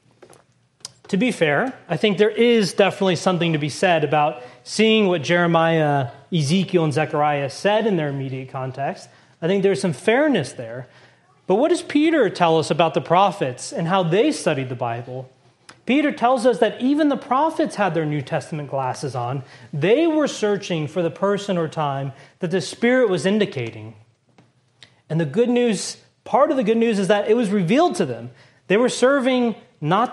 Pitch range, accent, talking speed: 150-225 Hz, American, 180 wpm